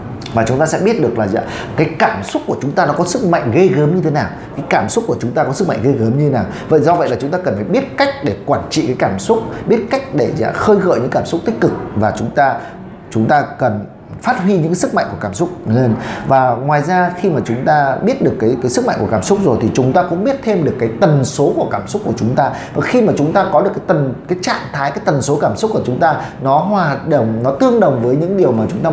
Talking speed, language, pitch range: 300 wpm, Vietnamese, 115-175 Hz